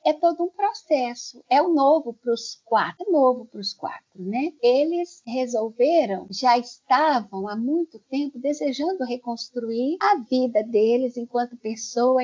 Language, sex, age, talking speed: Portuguese, female, 50-69, 150 wpm